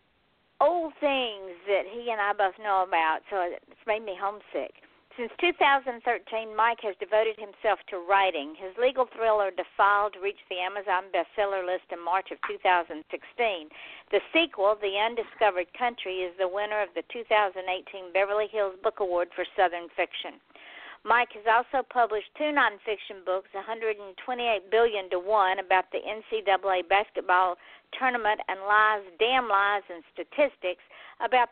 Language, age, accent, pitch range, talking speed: English, 60-79, American, 185-230 Hz, 145 wpm